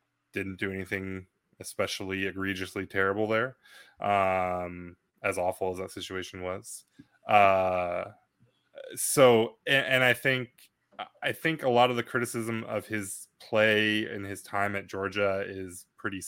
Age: 20-39